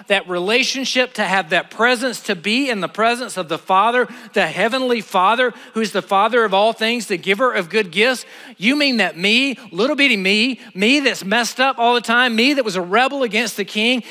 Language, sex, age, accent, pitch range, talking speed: English, male, 40-59, American, 210-265 Hz, 215 wpm